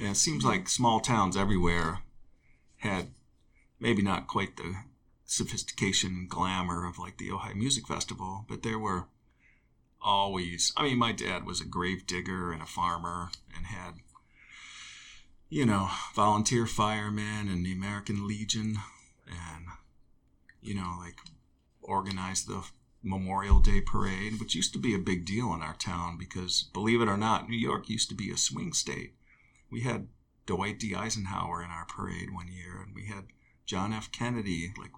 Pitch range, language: 90-110 Hz, English